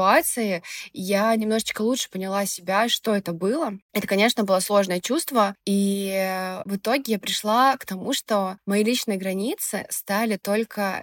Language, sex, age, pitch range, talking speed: Russian, female, 20-39, 190-225 Hz, 145 wpm